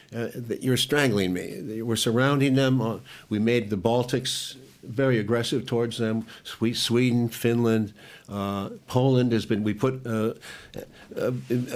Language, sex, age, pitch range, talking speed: English, male, 60-79, 110-130 Hz, 115 wpm